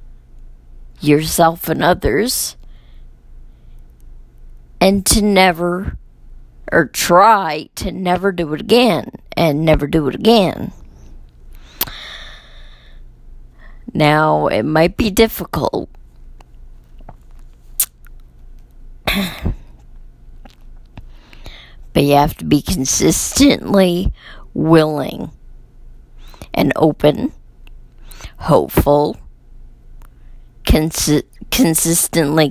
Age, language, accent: 40-59, English, American